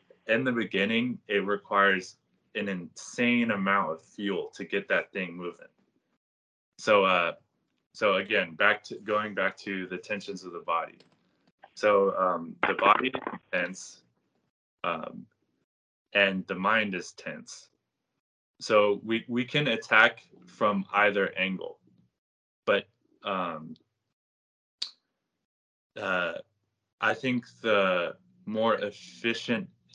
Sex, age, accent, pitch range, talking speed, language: male, 20-39, American, 90-110 Hz, 115 wpm, English